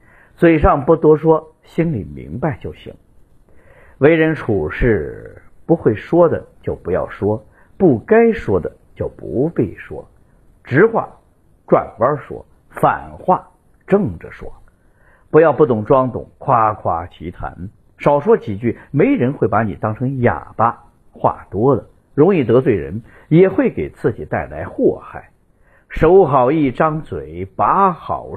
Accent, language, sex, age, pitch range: native, Chinese, male, 50-69, 100-155 Hz